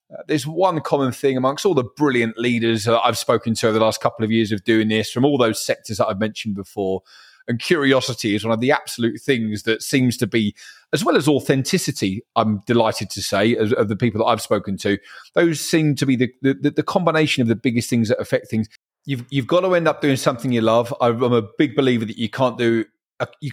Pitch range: 115-145 Hz